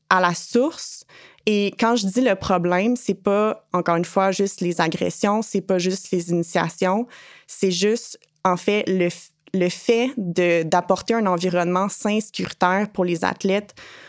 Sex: female